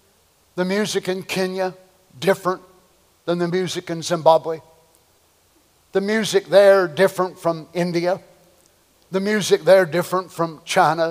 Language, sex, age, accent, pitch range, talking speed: English, male, 50-69, American, 130-185 Hz, 120 wpm